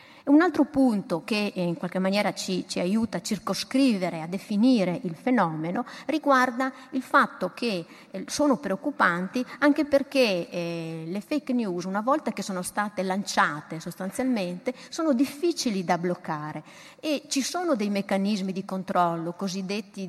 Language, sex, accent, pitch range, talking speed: Italian, female, native, 185-255 Hz, 145 wpm